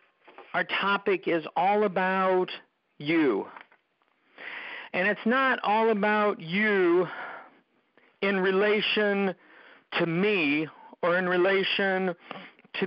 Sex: male